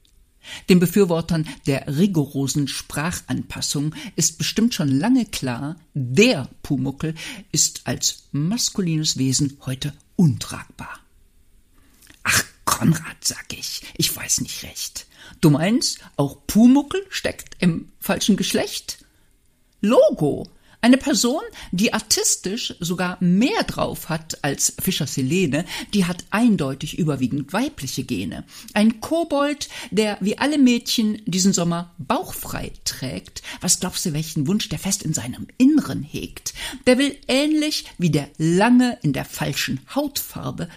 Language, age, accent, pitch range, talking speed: German, 50-69, German, 145-215 Hz, 120 wpm